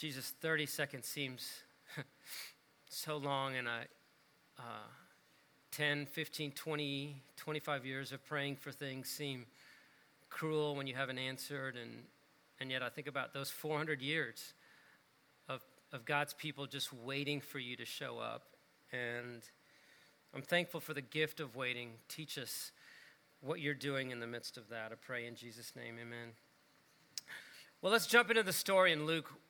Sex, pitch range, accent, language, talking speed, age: male, 140-175 Hz, American, English, 155 wpm, 40-59